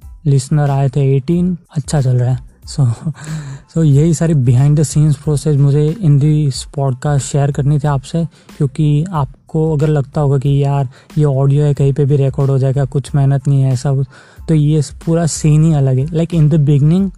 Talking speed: 205 wpm